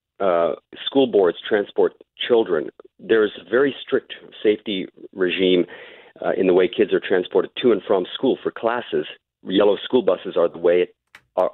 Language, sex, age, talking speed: English, male, 40-59, 165 wpm